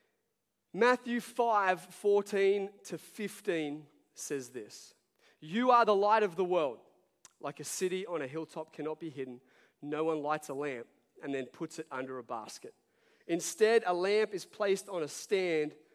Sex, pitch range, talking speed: male, 145-195 Hz, 160 wpm